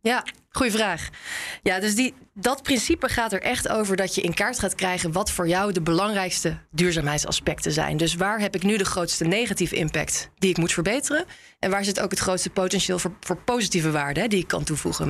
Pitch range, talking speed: 170-205 Hz, 215 wpm